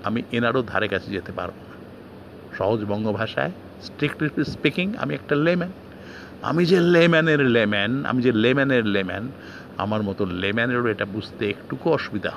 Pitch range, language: 100-125 Hz, Bengali